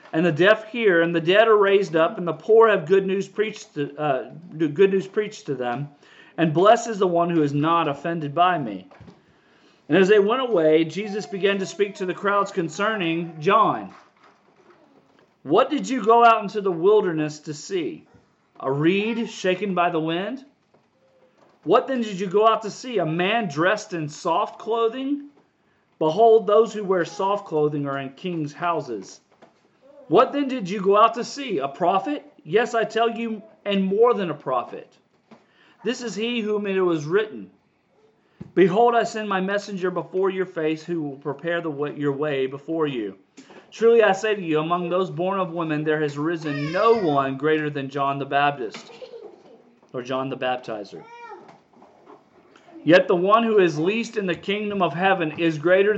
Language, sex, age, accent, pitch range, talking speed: English, male, 40-59, American, 160-220 Hz, 175 wpm